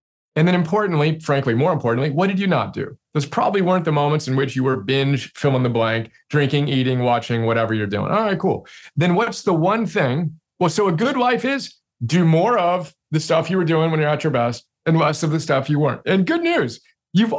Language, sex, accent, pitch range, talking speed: English, male, American, 130-185 Hz, 240 wpm